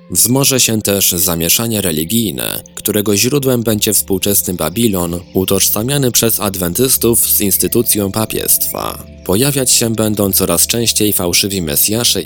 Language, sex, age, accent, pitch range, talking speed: Polish, male, 20-39, native, 85-115 Hz, 115 wpm